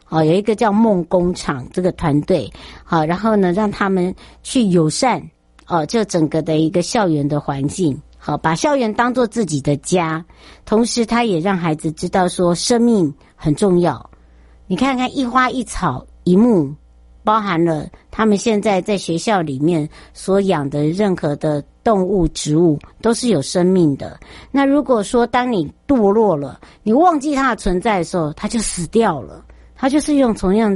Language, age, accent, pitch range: Chinese, 60-79, American, 160-220 Hz